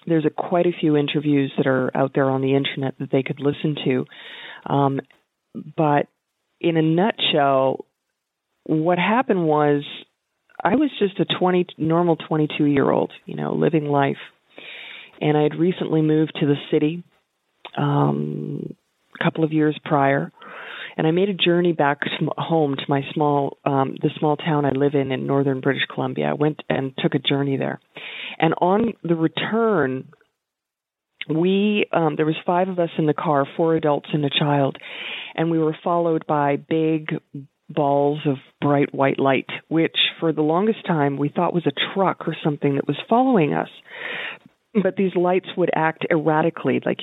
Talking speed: 165 wpm